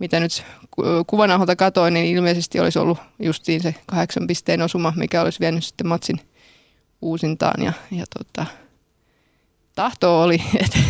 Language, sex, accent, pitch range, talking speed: Finnish, female, native, 165-185 Hz, 145 wpm